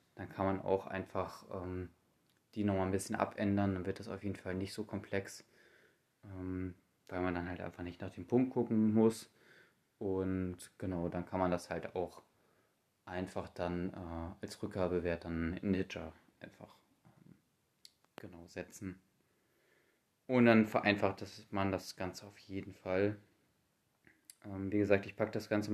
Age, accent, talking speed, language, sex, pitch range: 20-39, German, 160 wpm, German, male, 95-115 Hz